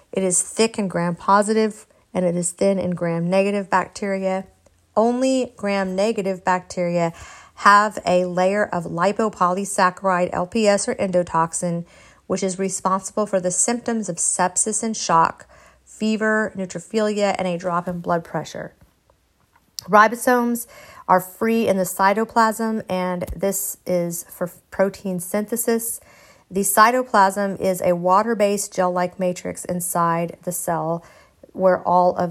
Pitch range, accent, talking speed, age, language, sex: 180-210 Hz, American, 125 wpm, 40-59, English, female